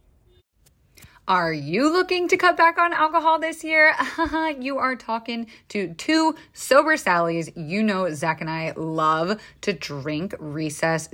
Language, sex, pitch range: English, female, 165-260 Hz